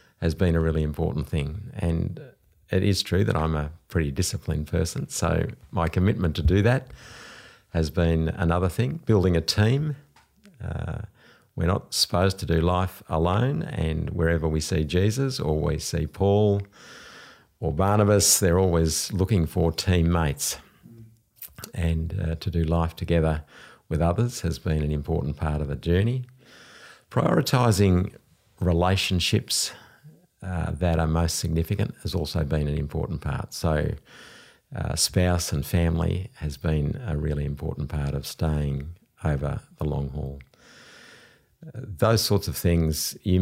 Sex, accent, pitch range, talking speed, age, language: male, Australian, 80-100 Hz, 145 wpm, 50-69, English